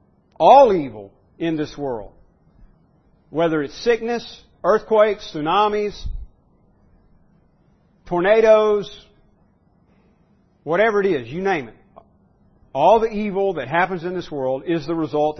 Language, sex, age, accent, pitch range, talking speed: English, male, 50-69, American, 140-195 Hz, 110 wpm